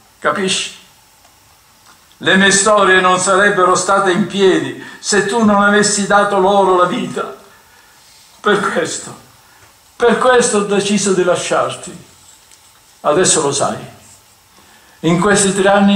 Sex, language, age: male, Italian, 60-79